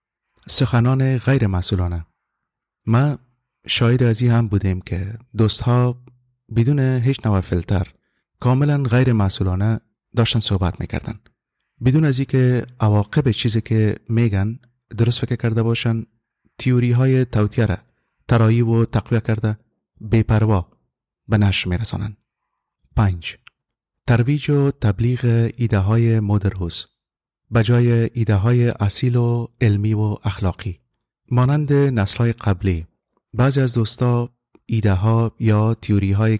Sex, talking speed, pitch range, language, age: male, 115 wpm, 105-120 Hz, English, 30-49